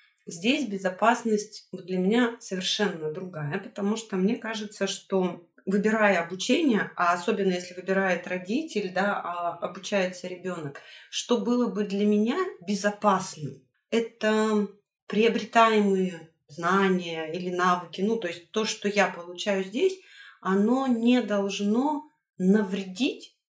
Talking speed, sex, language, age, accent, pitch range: 115 wpm, female, Russian, 30-49, native, 190-230 Hz